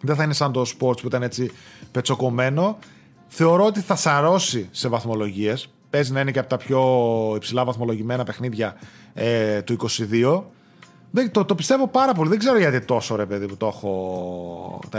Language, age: Greek, 30-49